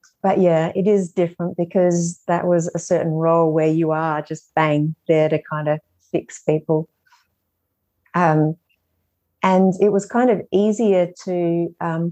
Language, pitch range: English, 165-185 Hz